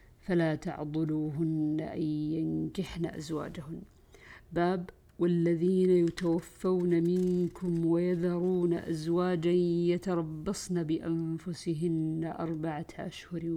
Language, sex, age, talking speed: Arabic, female, 50-69, 65 wpm